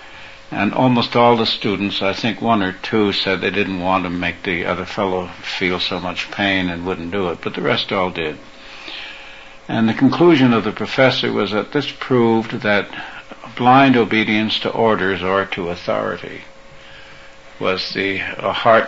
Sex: male